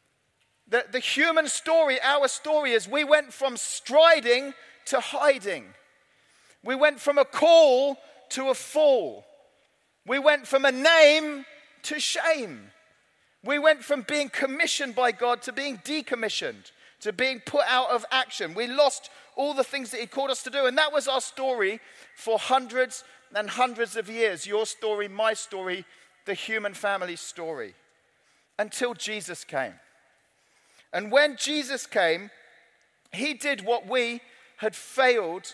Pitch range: 235-275 Hz